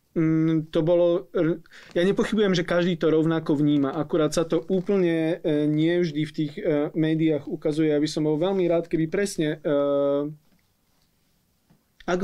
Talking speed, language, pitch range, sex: 125 wpm, Slovak, 155-180 Hz, male